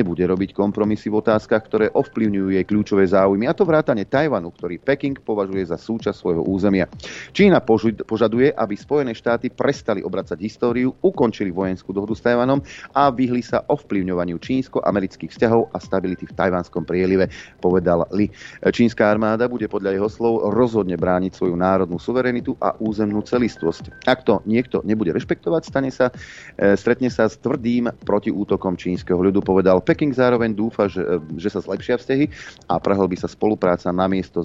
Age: 30-49